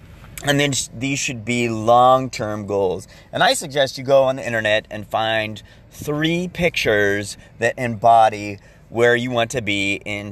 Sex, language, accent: male, English, American